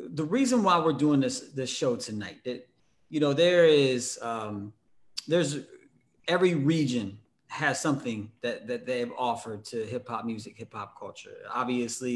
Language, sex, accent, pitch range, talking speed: English, male, American, 115-145 Hz, 150 wpm